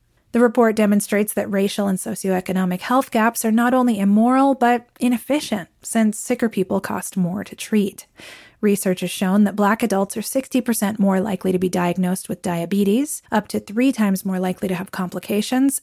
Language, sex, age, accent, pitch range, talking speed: English, female, 30-49, American, 190-230 Hz, 175 wpm